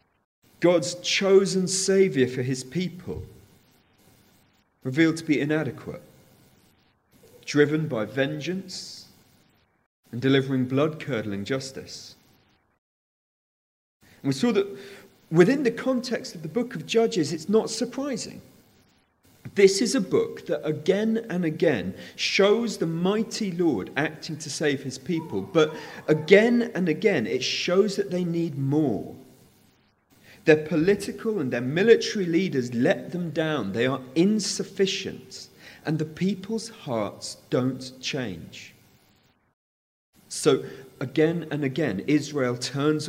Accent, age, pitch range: British, 40-59, 125-190 Hz